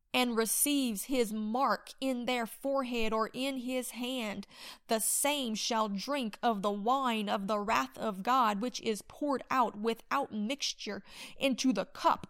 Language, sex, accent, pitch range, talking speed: English, female, American, 215-260 Hz, 155 wpm